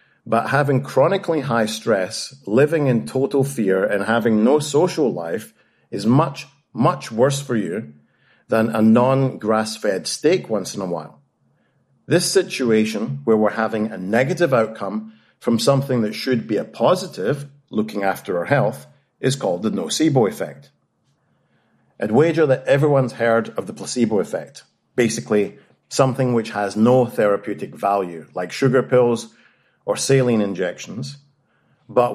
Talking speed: 140 wpm